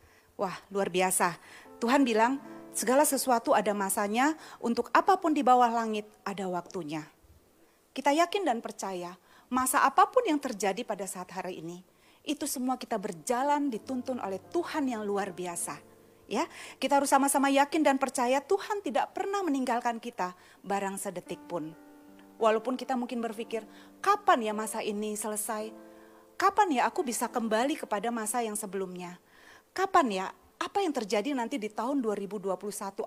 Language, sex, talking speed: Indonesian, female, 145 wpm